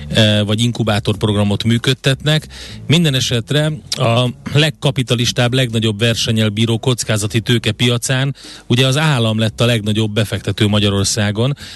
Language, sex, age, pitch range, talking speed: Hungarian, male, 30-49, 105-125 Hz, 105 wpm